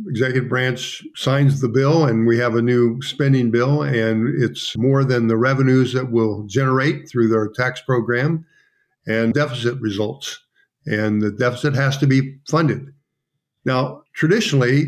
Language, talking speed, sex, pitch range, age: English, 150 wpm, male, 120-145 Hz, 50-69